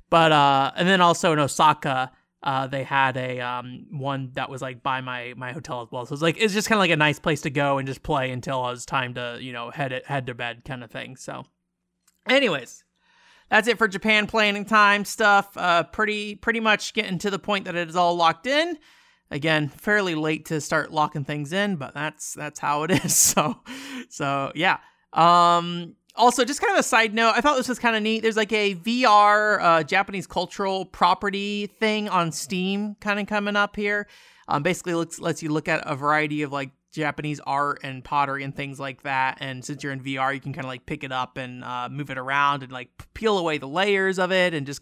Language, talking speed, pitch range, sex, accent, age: English, 230 wpm, 135-200 Hz, male, American, 30-49